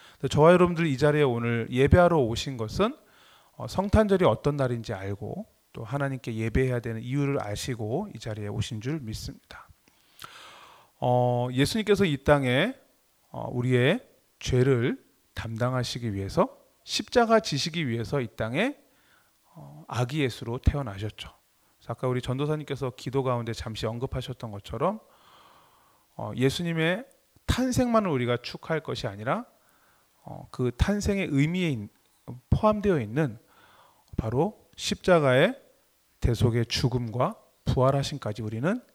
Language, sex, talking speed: English, male, 100 wpm